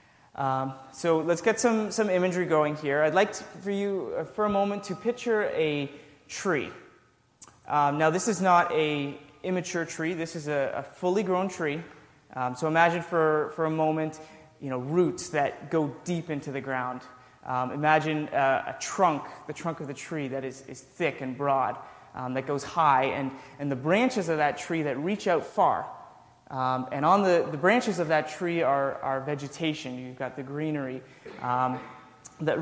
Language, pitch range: English, 140-175 Hz